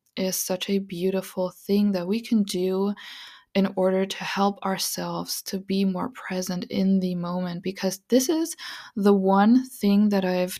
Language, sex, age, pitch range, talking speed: English, female, 20-39, 195-240 Hz, 165 wpm